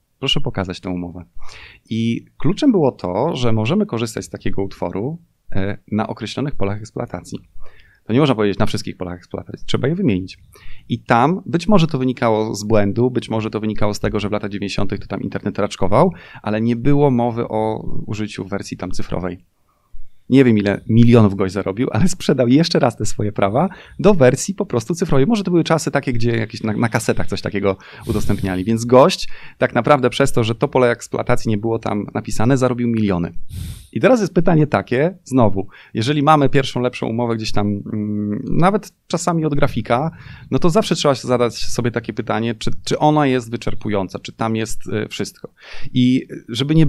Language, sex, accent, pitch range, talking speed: Polish, male, native, 105-135 Hz, 185 wpm